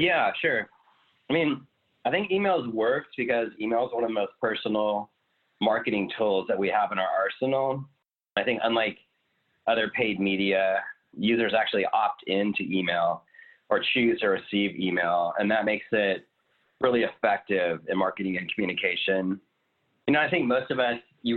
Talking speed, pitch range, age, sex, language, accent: 160 wpm, 95-120 Hz, 30-49, male, English, American